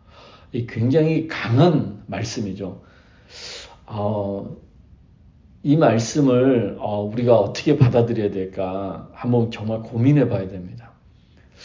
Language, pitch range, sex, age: Korean, 100-155 Hz, male, 40-59